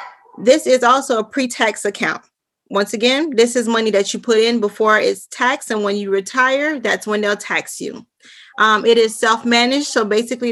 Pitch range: 210-245 Hz